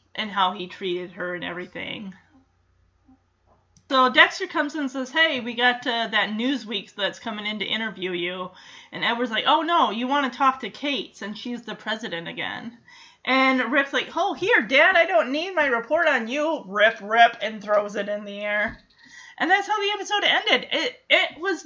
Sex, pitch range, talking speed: female, 220-325 Hz, 195 wpm